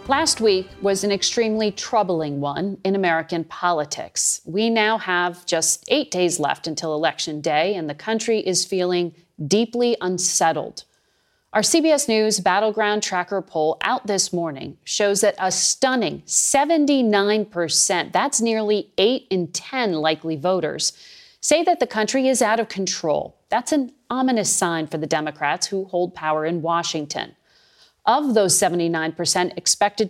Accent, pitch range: American, 175-225 Hz